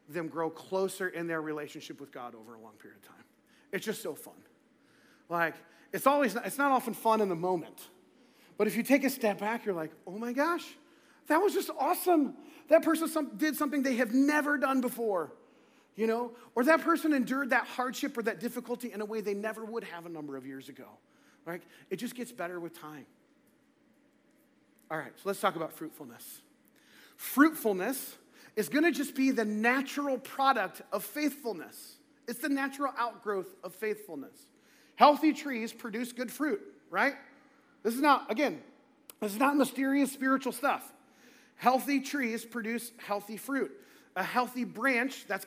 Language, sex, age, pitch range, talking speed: English, male, 40-59, 205-280 Hz, 175 wpm